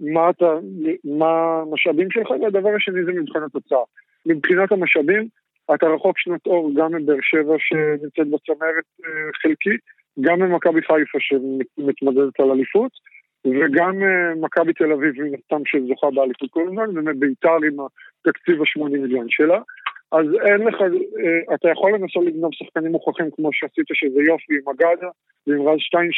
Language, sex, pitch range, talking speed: Hebrew, male, 150-180 Hz, 140 wpm